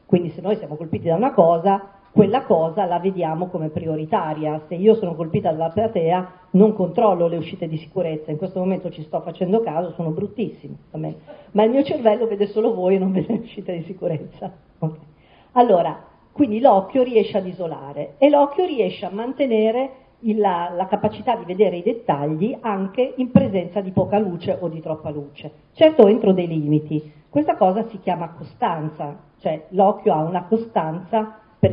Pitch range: 165-220 Hz